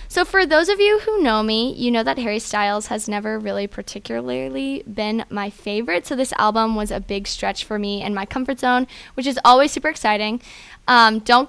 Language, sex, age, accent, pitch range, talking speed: English, female, 10-29, American, 210-250 Hz, 210 wpm